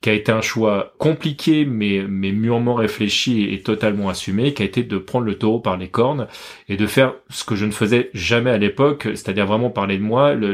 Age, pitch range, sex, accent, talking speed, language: 30-49, 95-115 Hz, male, French, 230 wpm, French